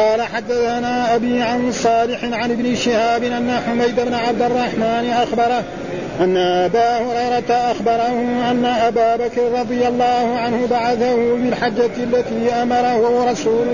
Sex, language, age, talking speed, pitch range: male, Arabic, 50-69, 120 wpm, 235-245 Hz